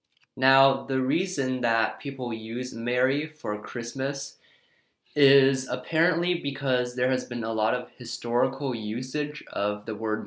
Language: Chinese